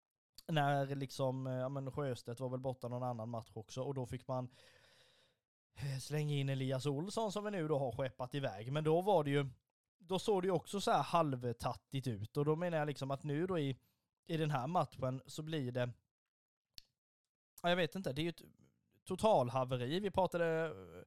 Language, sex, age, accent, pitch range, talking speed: Swedish, male, 20-39, native, 125-155 Hz, 195 wpm